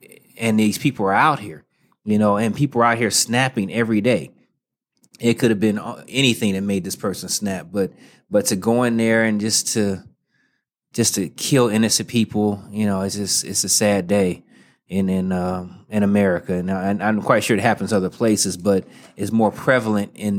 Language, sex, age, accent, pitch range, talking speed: English, male, 30-49, American, 95-115 Hz, 200 wpm